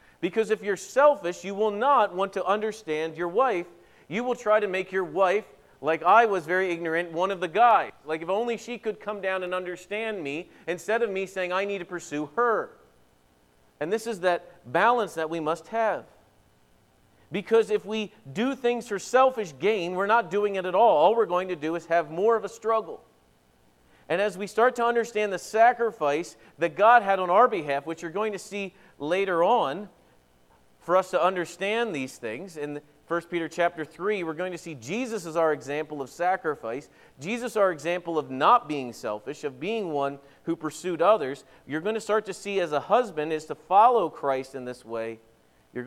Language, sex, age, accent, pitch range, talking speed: English, male, 40-59, American, 130-205 Hz, 200 wpm